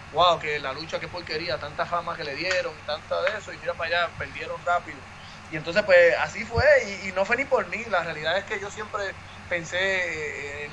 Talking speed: 225 wpm